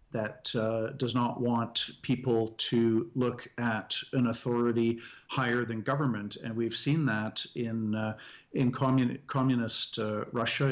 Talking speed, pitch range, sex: 140 wpm, 115-130 Hz, male